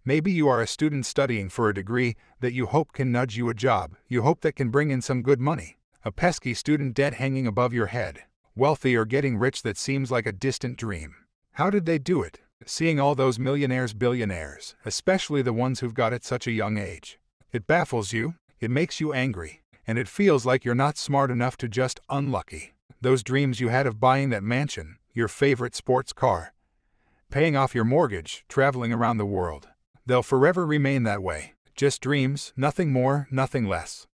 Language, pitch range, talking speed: English, 115-140 Hz, 200 wpm